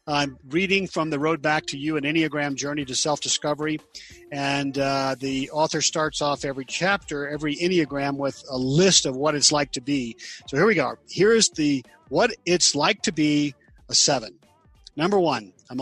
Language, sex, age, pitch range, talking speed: English, male, 50-69, 135-165 Hz, 180 wpm